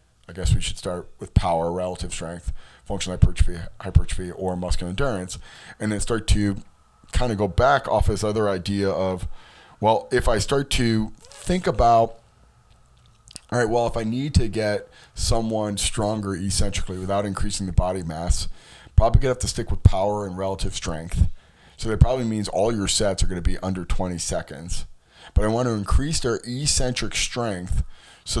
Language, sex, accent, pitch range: English, male, American, 90-115 Hz